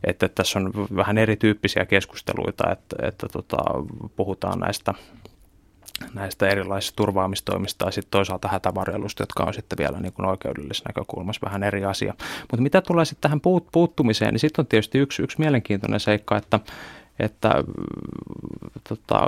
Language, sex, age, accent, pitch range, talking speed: Finnish, male, 30-49, native, 100-115 Hz, 140 wpm